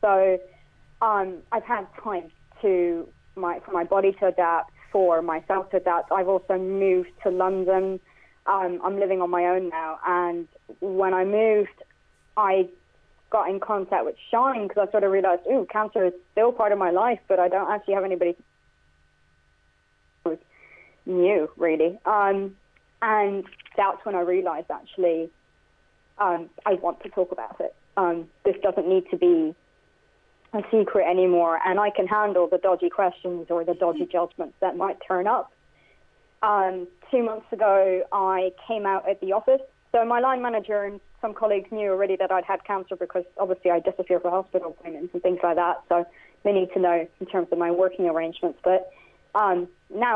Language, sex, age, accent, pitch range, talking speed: English, female, 30-49, British, 175-205 Hz, 170 wpm